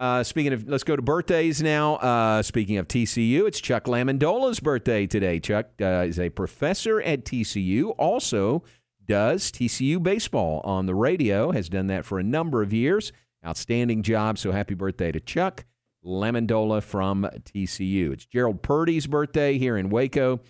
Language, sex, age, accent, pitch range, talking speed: English, male, 50-69, American, 95-125 Hz, 165 wpm